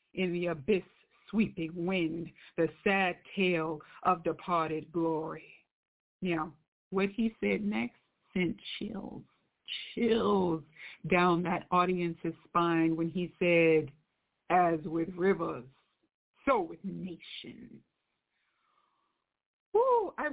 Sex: female